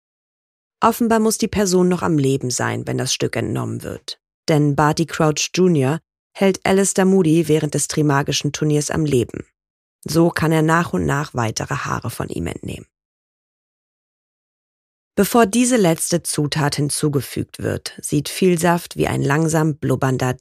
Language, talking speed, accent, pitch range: German, 145 wpm, German, 135-175 Hz